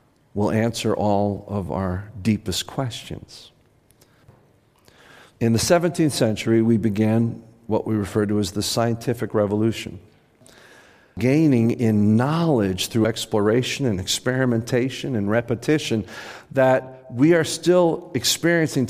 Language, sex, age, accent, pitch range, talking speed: English, male, 50-69, American, 115-155 Hz, 110 wpm